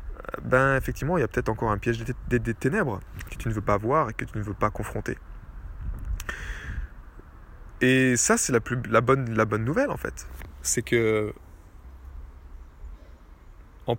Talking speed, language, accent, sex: 165 wpm, French, French, male